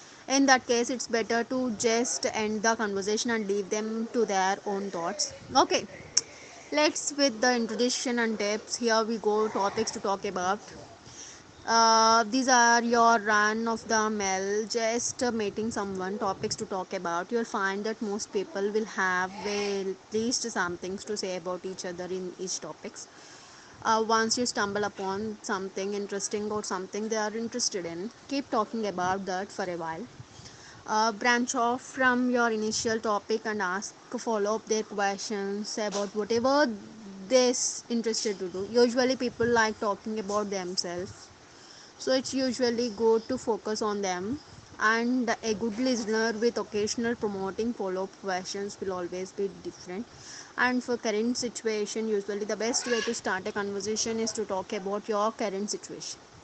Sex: female